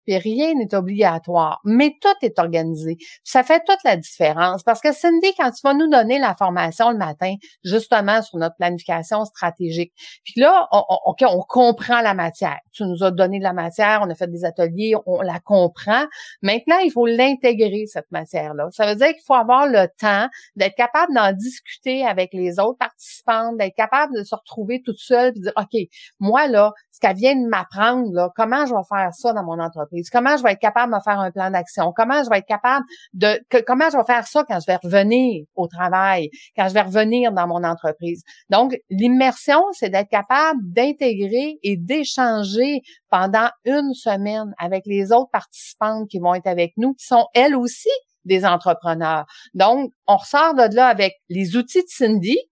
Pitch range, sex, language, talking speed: 190-255 Hz, female, French, 200 wpm